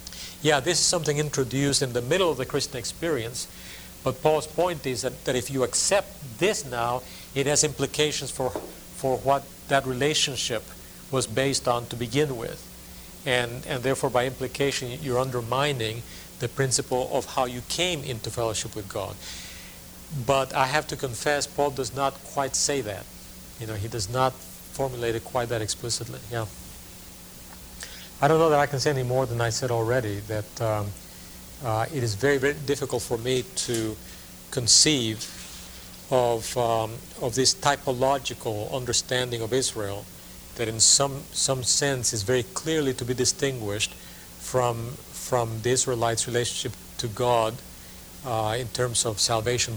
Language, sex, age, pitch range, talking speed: English, male, 50-69, 110-135 Hz, 160 wpm